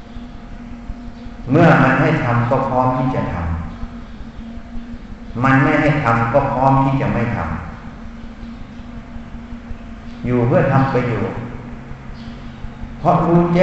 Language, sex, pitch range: Thai, male, 115-135 Hz